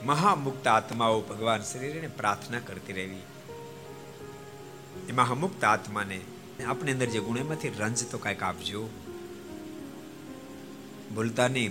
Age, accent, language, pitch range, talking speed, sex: 60-79, native, Gujarati, 100-150 Hz, 65 wpm, male